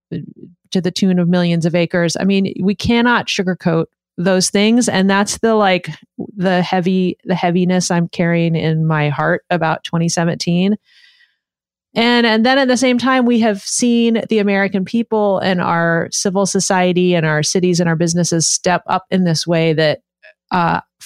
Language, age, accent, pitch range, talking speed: English, 30-49, American, 170-195 Hz, 170 wpm